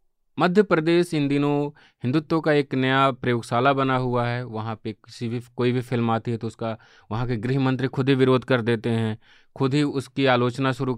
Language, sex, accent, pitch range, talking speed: English, male, Indian, 125-155 Hz, 190 wpm